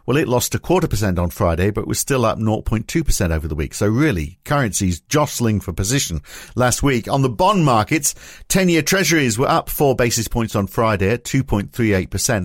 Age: 50-69